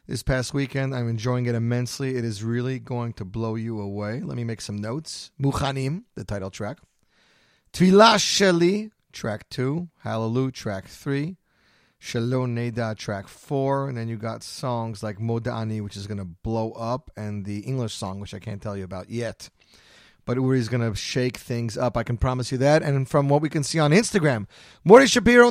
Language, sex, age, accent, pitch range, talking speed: English, male, 40-59, American, 115-150 Hz, 190 wpm